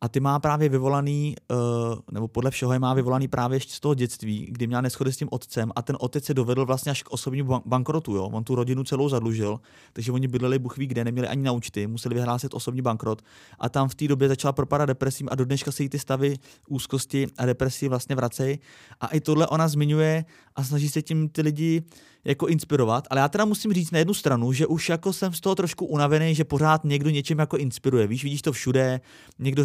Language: Czech